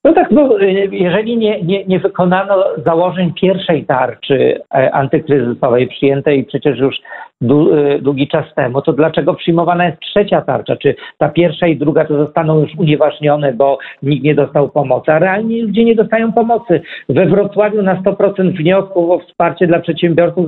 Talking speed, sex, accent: 155 wpm, male, native